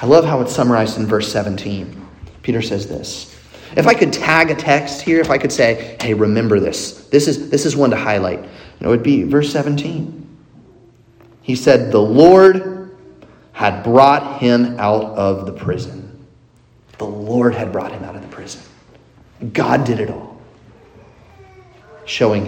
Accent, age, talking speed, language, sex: American, 30-49, 165 wpm, English, male